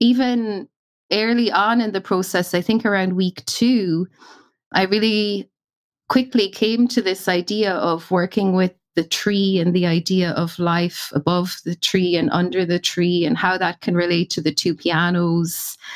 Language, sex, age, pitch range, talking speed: English, female, 30-49, 180-230 Hz, 165 wpm